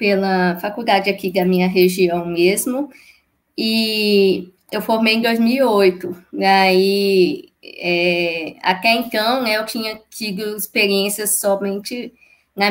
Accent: Brazilian